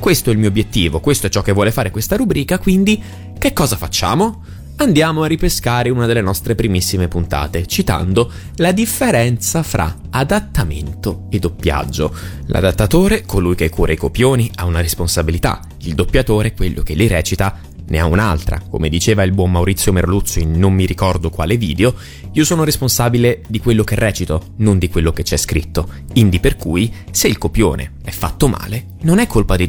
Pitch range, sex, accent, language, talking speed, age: 85-115 Hz, male, native, Italian, 180 wpm, 20-39